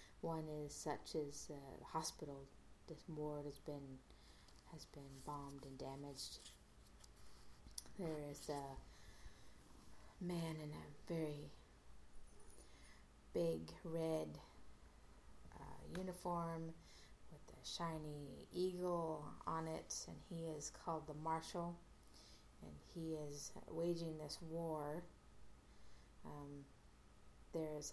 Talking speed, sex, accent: 100 wpm, female, American